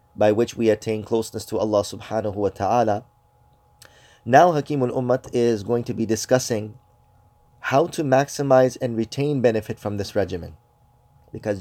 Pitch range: 105-120 Hz